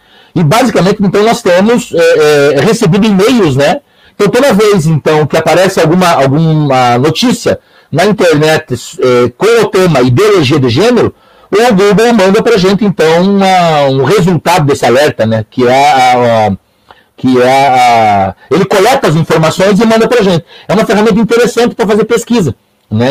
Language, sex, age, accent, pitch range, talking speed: Portuguese, male, 60-79, Brazilian, 155-225 Hz, 165 wpm